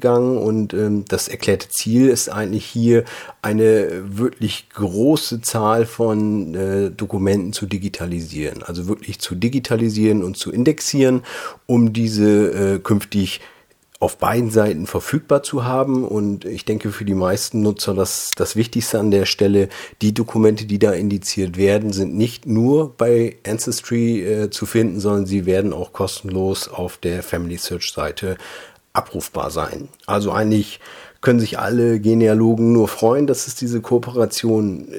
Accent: German